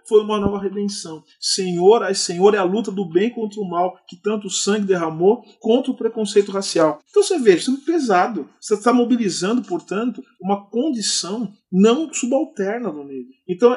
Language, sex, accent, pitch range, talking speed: Portuguese, male, Brazilian, 185-235 Hz, 175 wpm